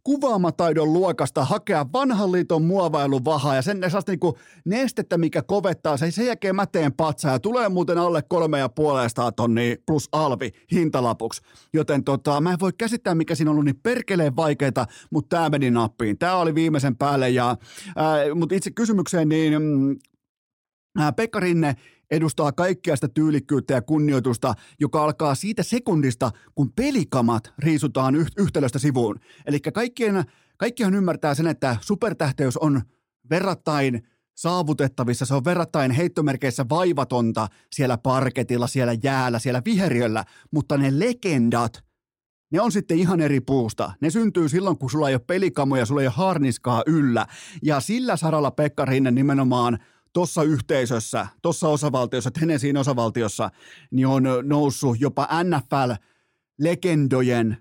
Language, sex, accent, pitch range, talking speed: Finnish, male, native, 130-170 Hz, 135 wpm